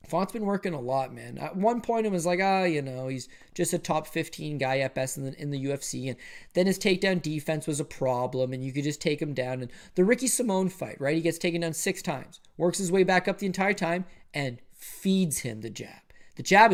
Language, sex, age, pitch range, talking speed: English, male, 20-39, 145-195 Hz, 255 wpm